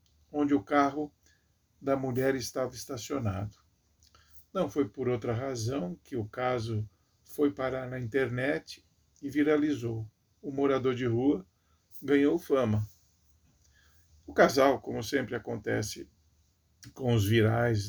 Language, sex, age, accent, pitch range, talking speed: Portuguese, male, 50-69, Brazilian, 105-140 Hz, 115 wpm